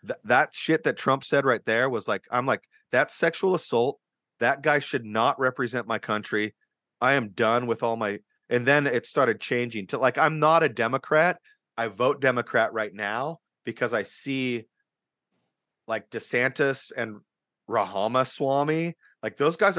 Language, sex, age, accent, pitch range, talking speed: English, male, 30-49, American, 110-140 Hz, 165 wpm